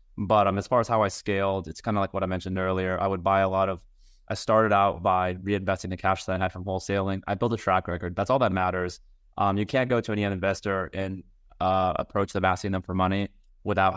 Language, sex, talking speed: English, male, 255 wpm